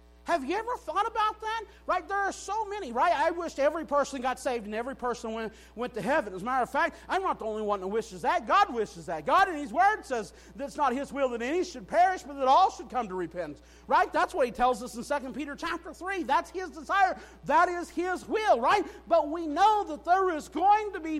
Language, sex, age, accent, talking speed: English, male, 50-69, American, 255 wpm